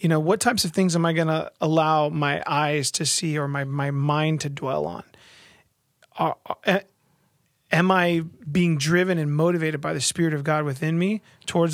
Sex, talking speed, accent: male, 190 wpm, American